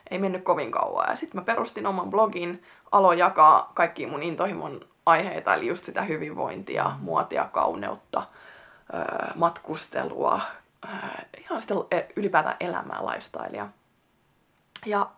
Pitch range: 190-275 Hz